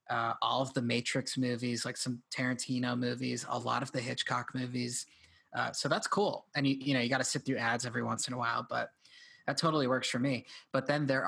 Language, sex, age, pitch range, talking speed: English, male, 20-39, 120-135 Hz, 235 wpm